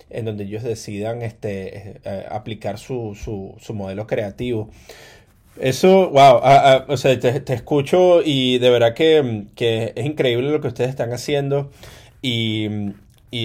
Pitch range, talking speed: 110-140 Hz, 155 wpm